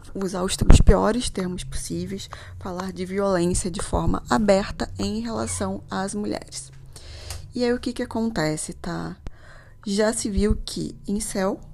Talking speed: 145 wpm